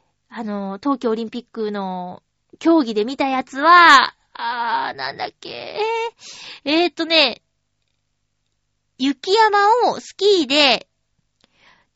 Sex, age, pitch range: female, 20-39, 230-340 Hz